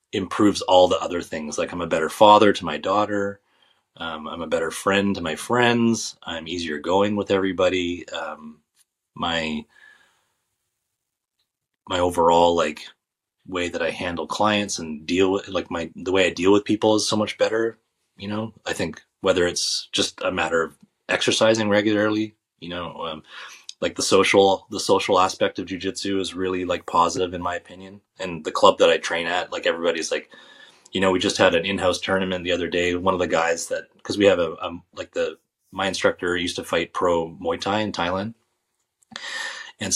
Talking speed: 190 wpm